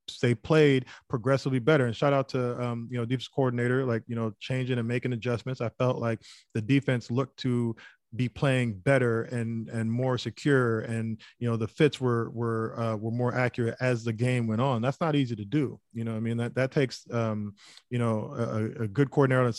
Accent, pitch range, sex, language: American, 115-135 Hz, male, English